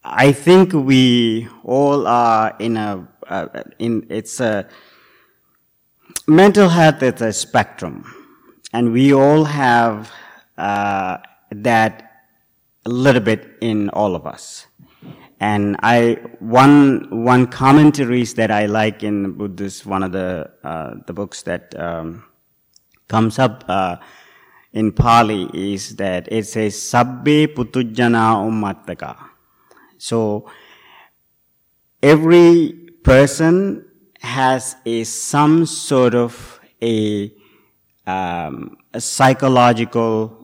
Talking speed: 105 wpm